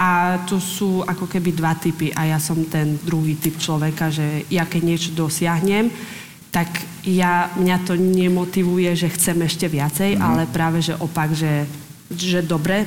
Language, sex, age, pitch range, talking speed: Slovak, female, 20-39, 155-175 Hz, 165 wpm